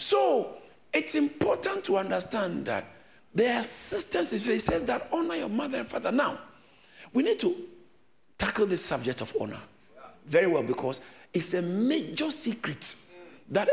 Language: English